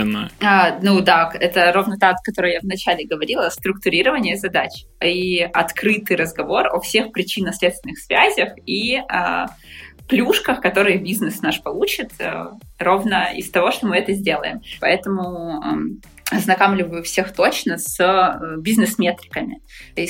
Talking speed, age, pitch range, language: 115 wpm, 20-39, 175-210 Hz, Russian